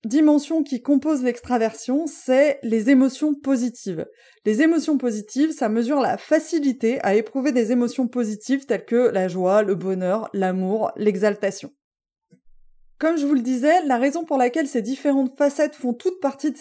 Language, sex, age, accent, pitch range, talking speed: French, female, 20-39, French, 230-290 Hz, 160 wpm